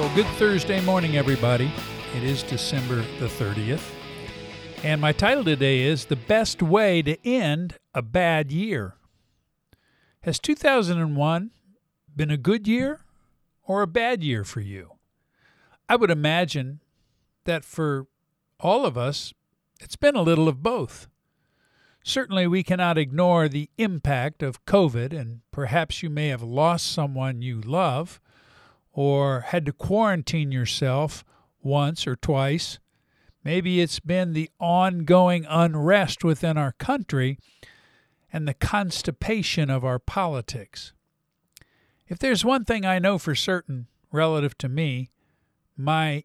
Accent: American